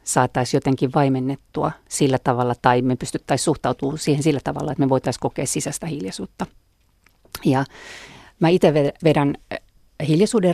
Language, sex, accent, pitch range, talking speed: Finnish, female, native, 135-155 Hz, 130 wpm